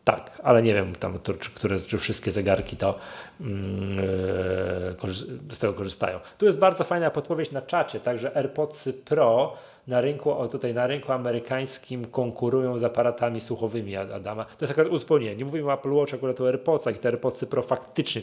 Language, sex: Polish, male